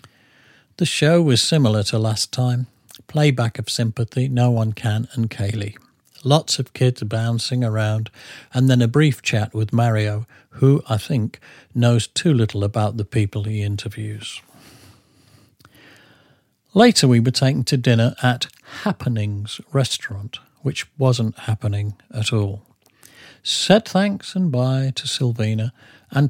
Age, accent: 50-69, British